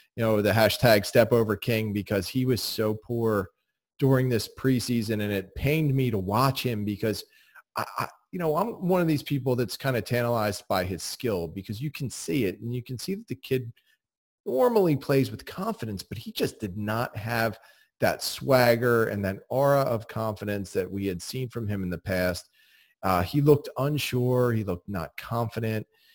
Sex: male